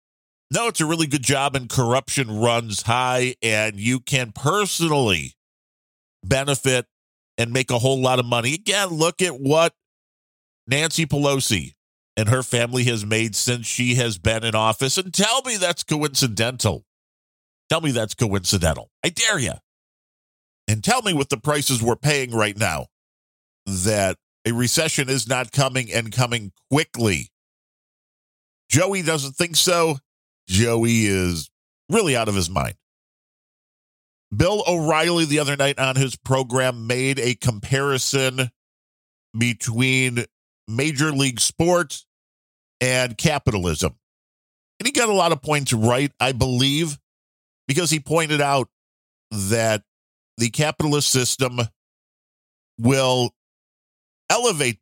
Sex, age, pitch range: male, 40-59, 110-145 Hz